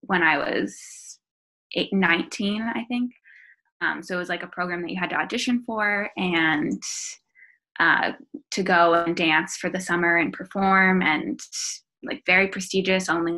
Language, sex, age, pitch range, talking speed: English, female, 20-39, 175-215 Hz, 165 wpm